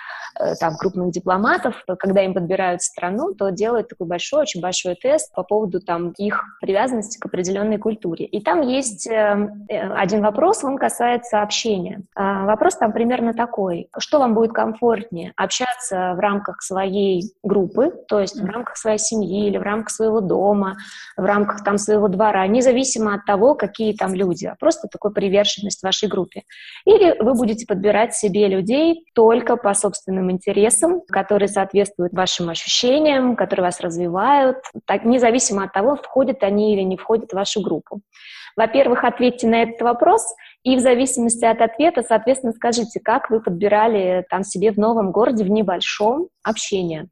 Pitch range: 195-235 Hz